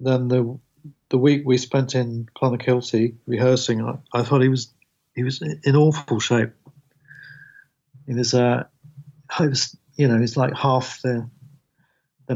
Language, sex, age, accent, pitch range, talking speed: English, male, 50-69, British, 120-140 Hz, 150 wpm